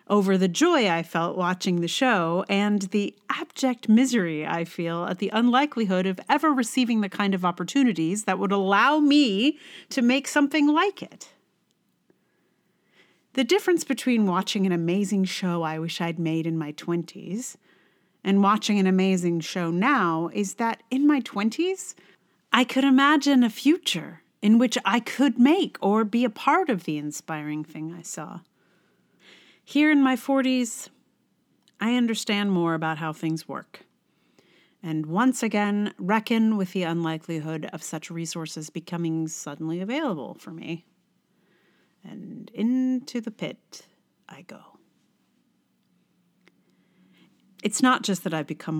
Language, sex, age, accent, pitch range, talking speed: English, female, 40-59, American, 170-250 Hz, 145 wpm